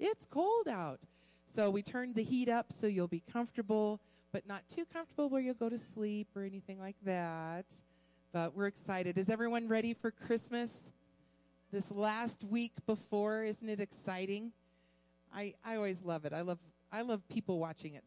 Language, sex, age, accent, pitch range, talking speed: English, female, 40-59, American, 165-225 Hz, 175 wpm